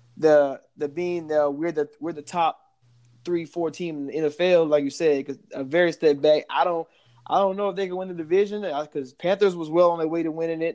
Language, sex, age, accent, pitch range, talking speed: English, male, 20-39, American, 140-170 Hz, 245 wpm